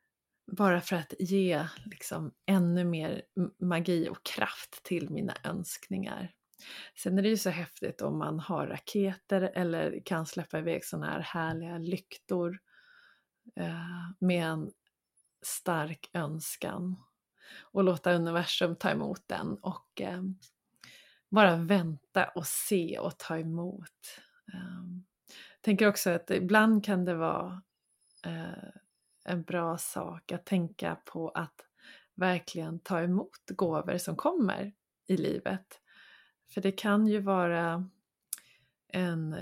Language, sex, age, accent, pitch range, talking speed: Swedish, female, 30-49, native, 175-200 Hz, 115 wpm